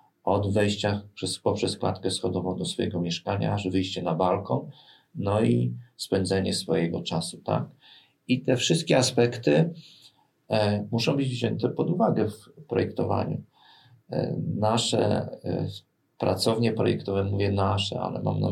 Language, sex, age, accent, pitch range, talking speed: Polish, male, 40-59, native, 95-125 Hz, 120 wpm